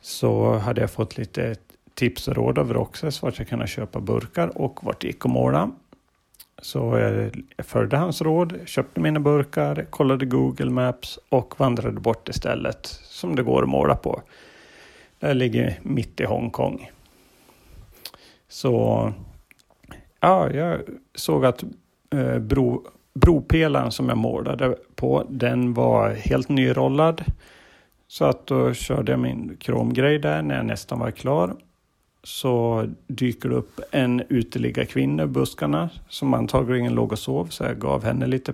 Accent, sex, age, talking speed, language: Swedish, male, 40-59, 145 wpm, English